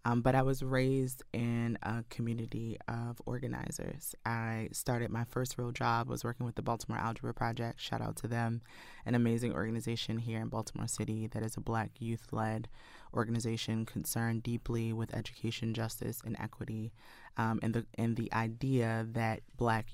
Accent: American